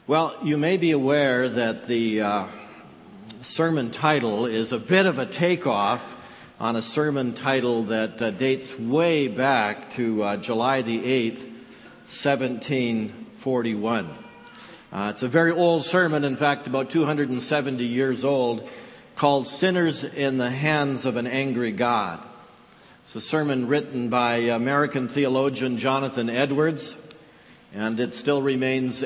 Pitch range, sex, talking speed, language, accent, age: 125-150 Hz, male, 135 wpm, English, American, 60-79